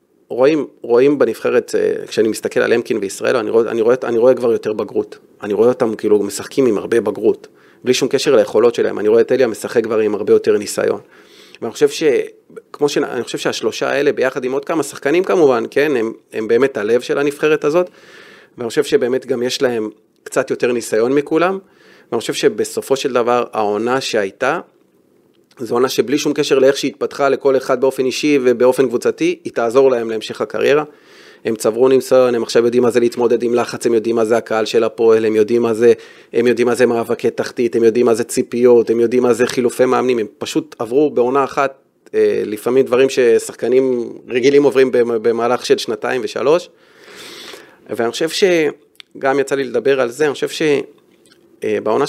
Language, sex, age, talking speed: Hebrew, male, 30-49, 180 wpm